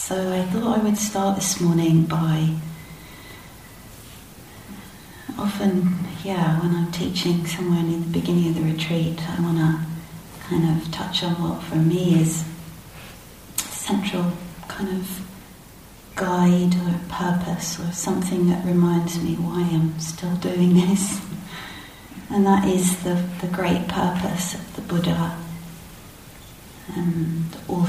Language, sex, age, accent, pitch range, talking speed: English, female, 40-59, British, 165-180 Hz, 130 wpm